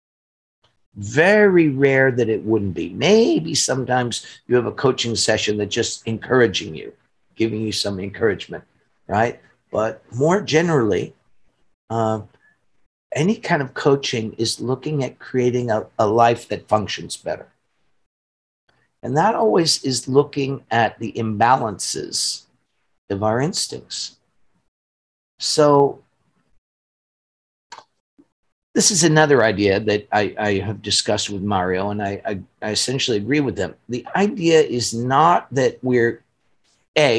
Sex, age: male, 50-69